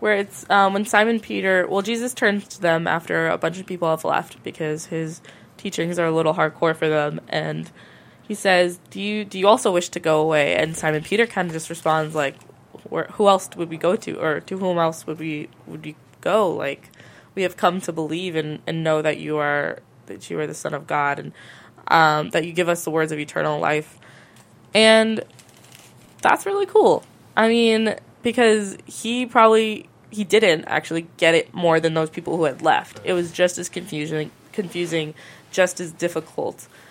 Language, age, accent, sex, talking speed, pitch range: English, 20-39, American, female, 200 wpm, 155-195 Hz